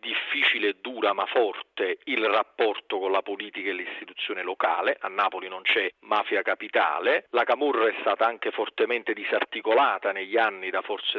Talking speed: 155 wpm